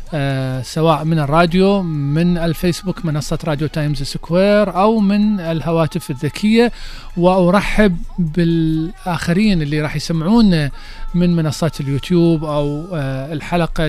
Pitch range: 150-190 Hz